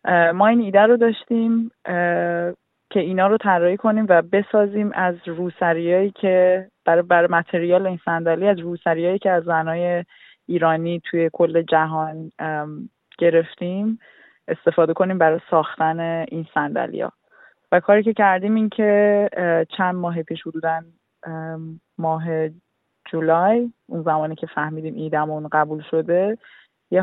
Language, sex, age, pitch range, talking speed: Persian, female, 20-39, 165-190 Hz, 120 wpm